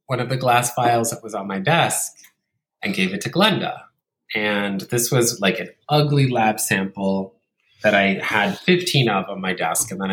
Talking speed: 195 wpm